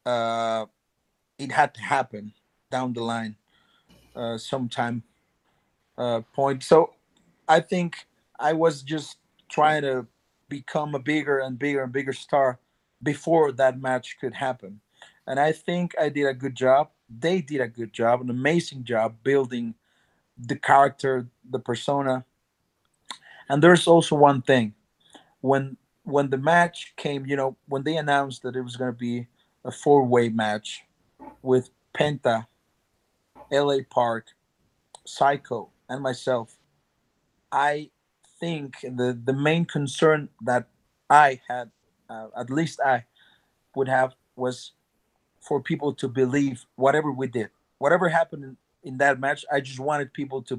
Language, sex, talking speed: English, male, 140 wpm